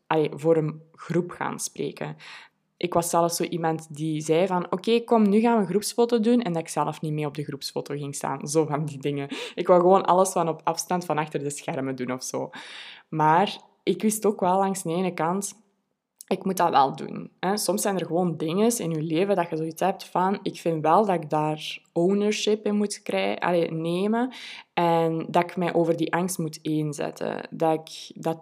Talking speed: 210 wpm